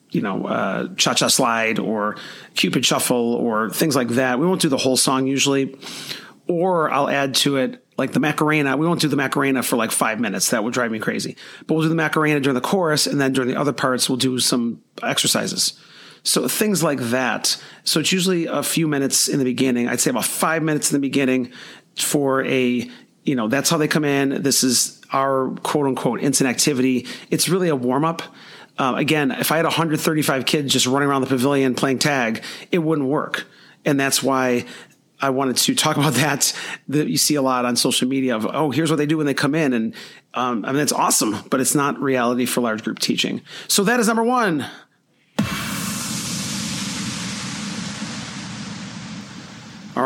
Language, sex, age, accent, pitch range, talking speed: English, male, 30-49, American, 130-165 Hz, 195 wpm